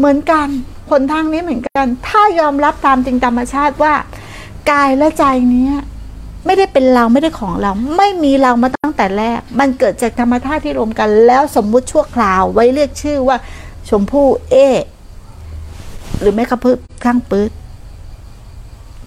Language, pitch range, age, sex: Thai, 210-290 Hz, 60-79, female